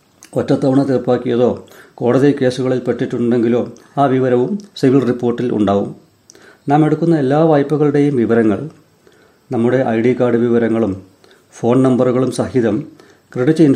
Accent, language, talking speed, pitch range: native, Malayalam, 105 wpm, 125-145 Hz